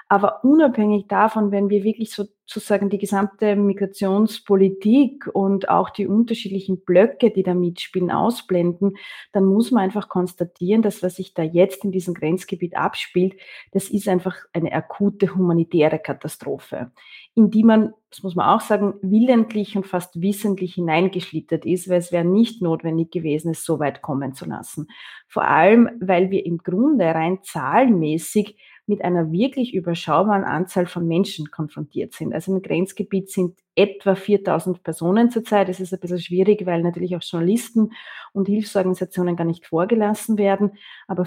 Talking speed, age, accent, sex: 155 wpm, 30-49, Austrian, female